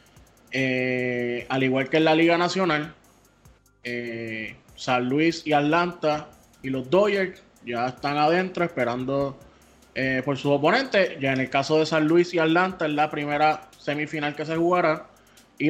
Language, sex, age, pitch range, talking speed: English, male, 20-39, 130-160 Hz, 155 wpm